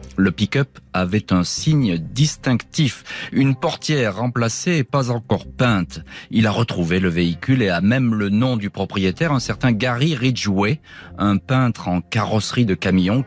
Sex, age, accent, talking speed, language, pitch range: male, 40-59, French, 160 wpm, French, 90-120 Hz